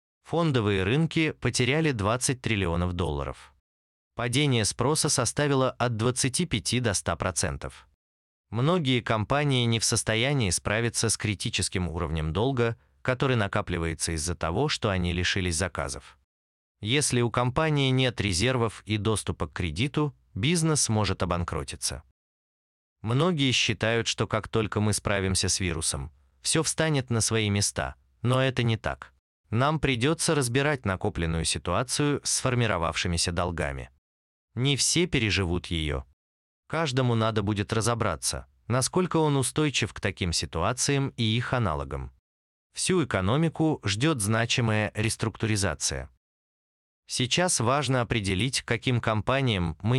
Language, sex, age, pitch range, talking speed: Russian, male, 30-49, 85-130 Hz, 115 wpm